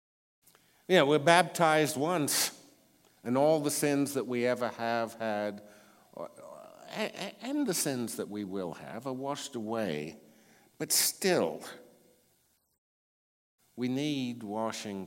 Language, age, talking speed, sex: English, 50-69, 110 wpm, male